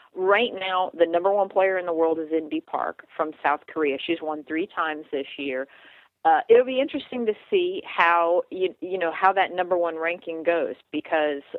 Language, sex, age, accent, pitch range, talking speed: English, female, 40-59, American, 155-195 Hz, 195 wpm